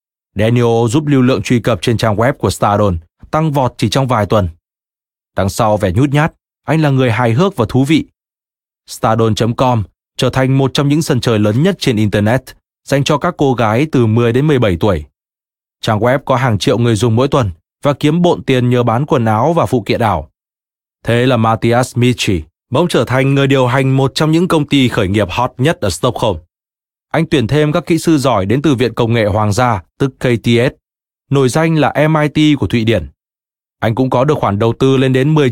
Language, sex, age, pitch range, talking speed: Vietnamese, male, 20-39, 110-145 Hz, 215 wpm